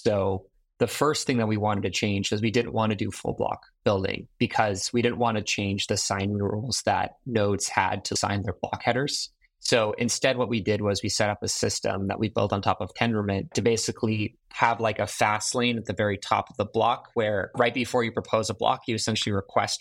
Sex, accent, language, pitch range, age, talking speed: male, American, English, 100-115 Hz, 20-39, 235 wpm